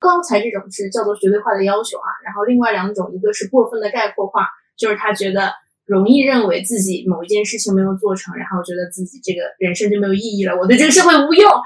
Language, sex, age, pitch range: Chinese, female, 20-39, 195-245 Hz